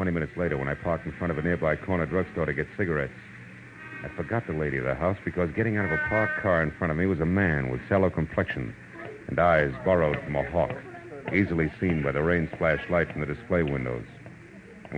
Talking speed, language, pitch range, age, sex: 230 wpm, English, 75-100 Hz, 70-89, male